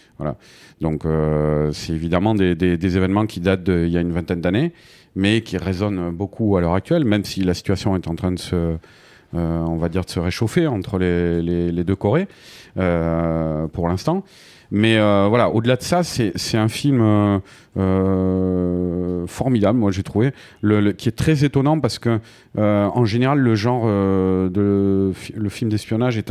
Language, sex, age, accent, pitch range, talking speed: French, male, 40-59, French, 95-120 Hz, 190 wpm